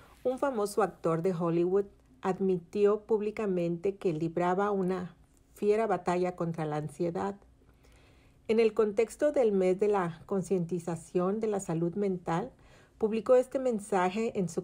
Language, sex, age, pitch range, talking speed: Spanish, female, 50-69, 175-210 Hz, 130 wpm